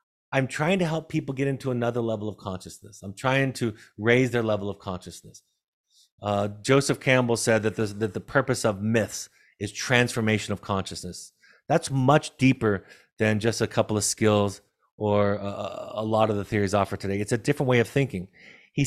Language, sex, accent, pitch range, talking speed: English, male, American, 105-130 Hz, 185 wpm